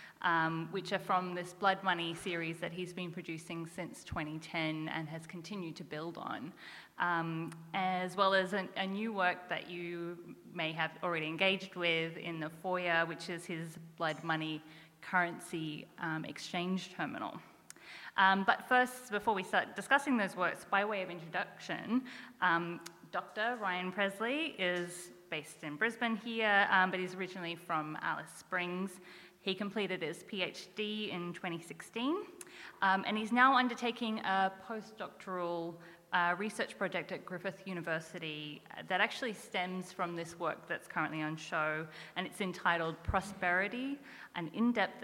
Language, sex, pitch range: English, female, 165-195 Hz